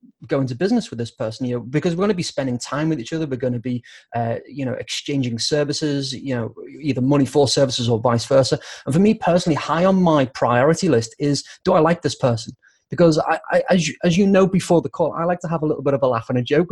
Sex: male